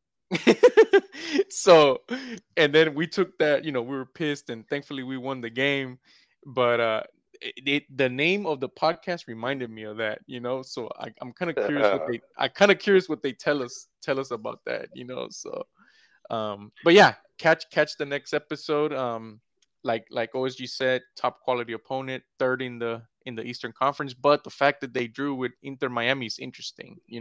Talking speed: 185 wpm